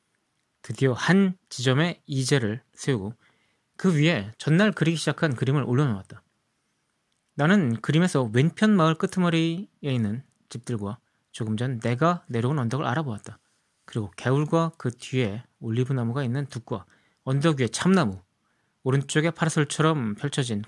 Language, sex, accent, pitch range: Korean, male, native, 115-150 Hz